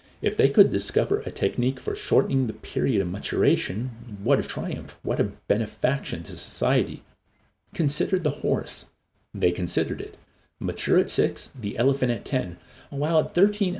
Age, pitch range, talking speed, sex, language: 50-69, 90-135 Hz, 155 wpm, male, English